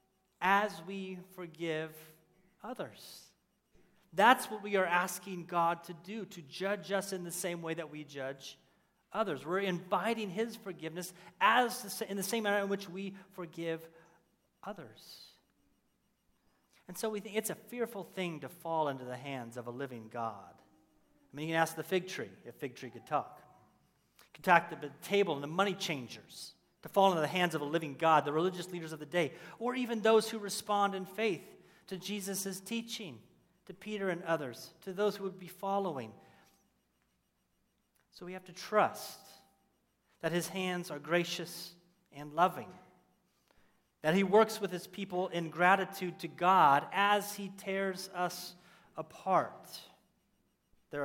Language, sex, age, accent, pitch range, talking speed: English, male, 40-59, American, 155-195 Hz, 165 wpm